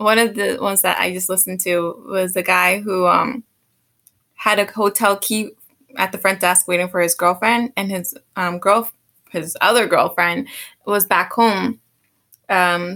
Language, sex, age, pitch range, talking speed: English, female, 20-39, 190-230 Hz, 170 wpm